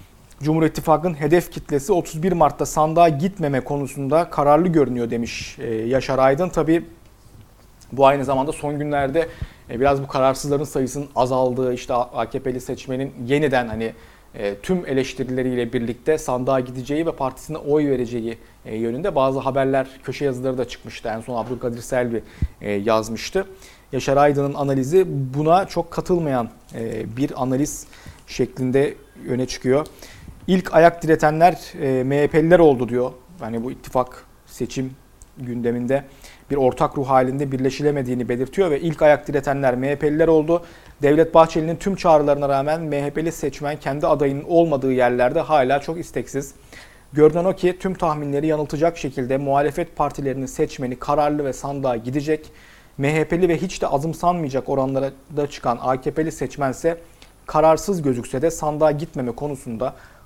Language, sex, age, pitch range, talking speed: Turkish, male, 40-59, 125-155 Hz, 125 wpm